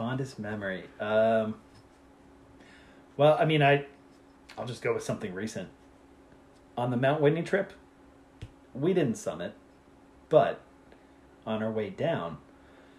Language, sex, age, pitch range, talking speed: English, male, 30-49, 110-145 Hz, 120 wpm